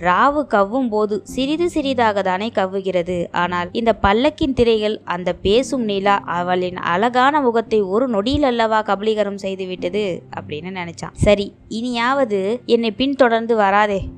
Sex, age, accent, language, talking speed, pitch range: female, 20-39, native, Tamil, 125 wpm, 185-225 Hz